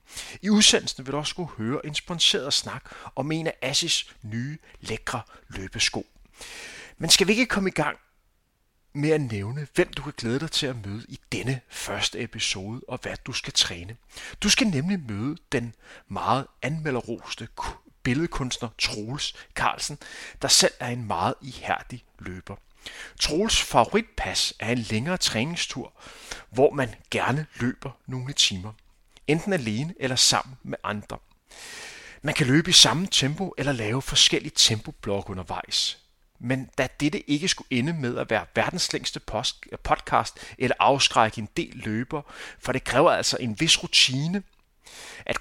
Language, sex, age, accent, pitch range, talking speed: Danish, male, 30-49, native, 115-155 Hz, 150 wpm